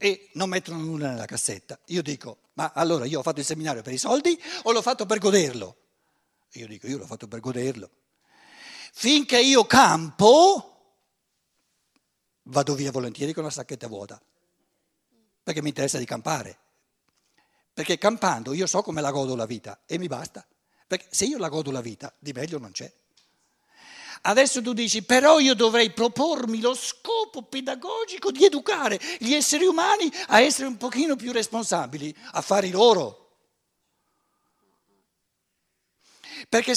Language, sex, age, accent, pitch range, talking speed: Italian, male, 60-79, native, 160-260 Hz, 150 wpm